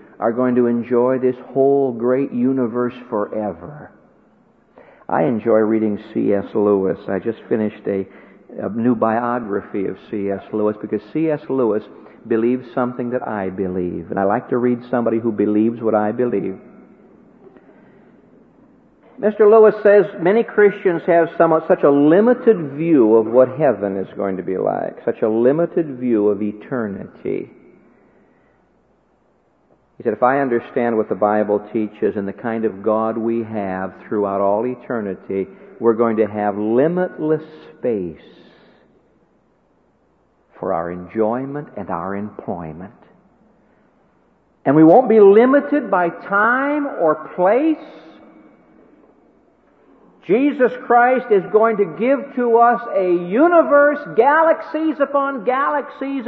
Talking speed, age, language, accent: 130 wpm, 60-79, English, American